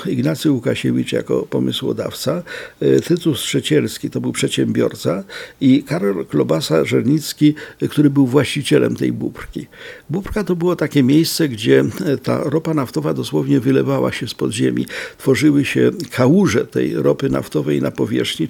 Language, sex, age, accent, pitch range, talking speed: Polish, male, 60-79, native, 120-160 Hz, 130 wpm